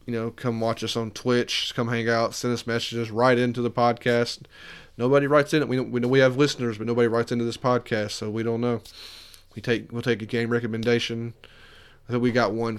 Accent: American